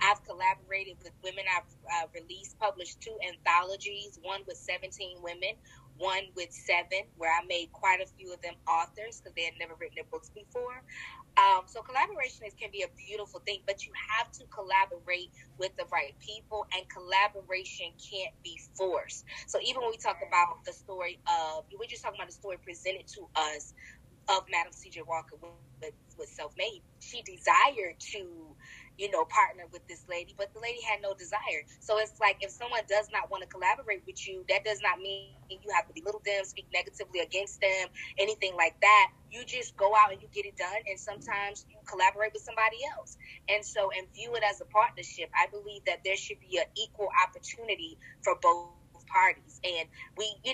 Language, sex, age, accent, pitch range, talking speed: English, female, 20-39, American, 175-220 Hz, 195 wpm